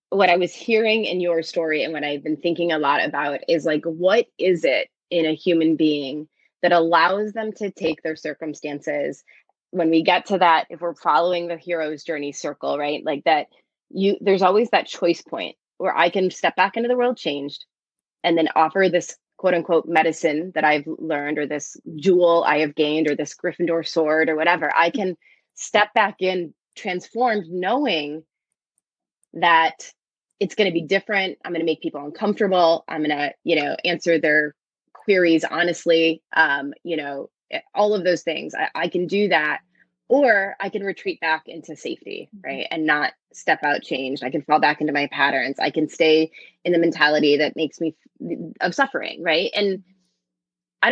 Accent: American